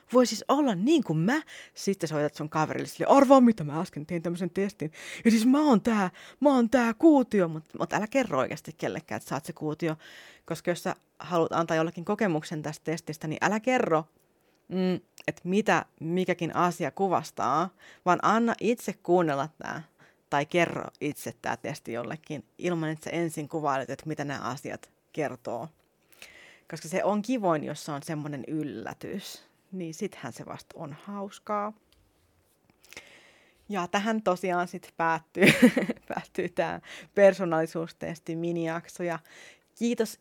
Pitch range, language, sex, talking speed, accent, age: 155-195 Hz, Finnish, female, 145 wpm, native, 30-49